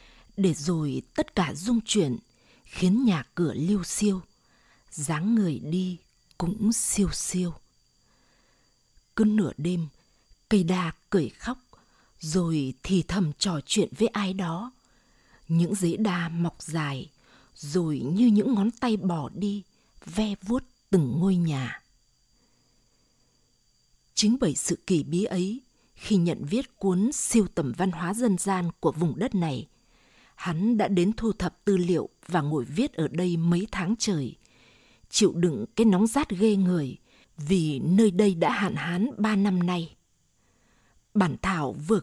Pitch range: 160-210 Hz